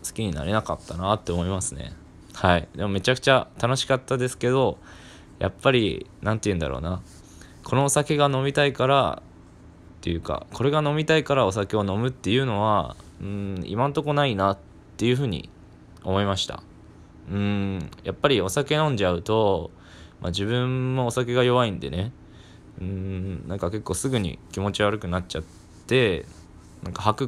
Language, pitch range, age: Japanese, 85-120 Hz, 20-39